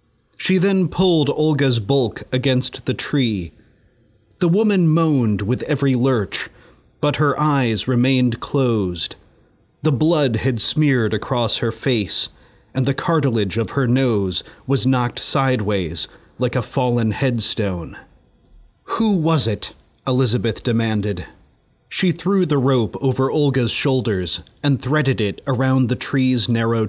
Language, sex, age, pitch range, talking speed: English, male, 30-49, 110-145 Hz, 130 wpm